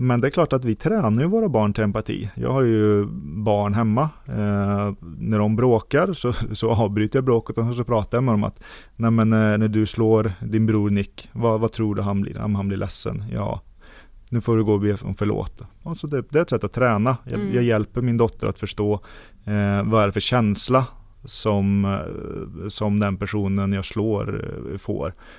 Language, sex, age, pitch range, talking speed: Swedish, male, 30-49, 100-115 Hz, 210 wpm